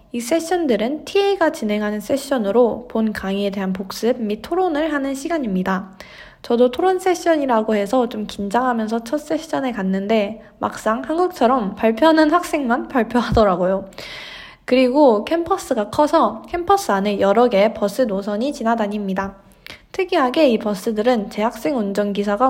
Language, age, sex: Korean, 20-39, female